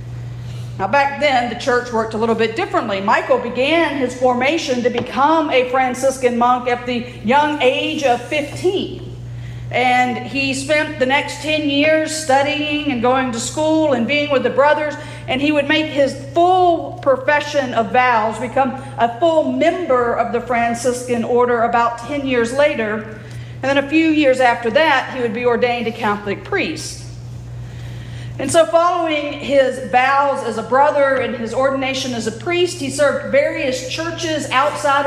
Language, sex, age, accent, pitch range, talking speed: English, female, 40-59, American, 230-285 Hz, 165 wpm